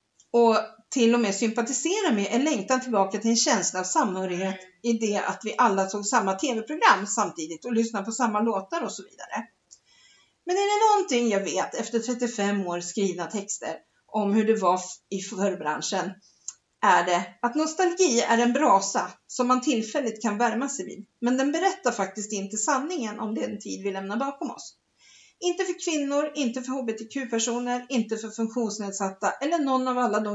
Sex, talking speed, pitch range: female, 175 wpm, 200-280 Hz